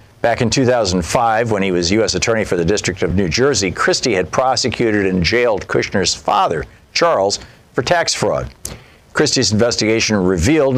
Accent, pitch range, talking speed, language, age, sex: American, 100-125 Hz, 155 wpm, English, 60-79, male